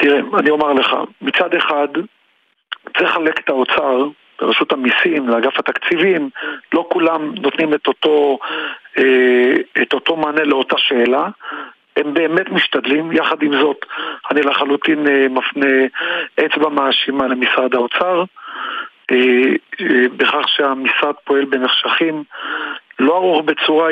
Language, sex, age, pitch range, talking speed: Hebrew, male, 50-69, 150-215 Hz, 110 wpm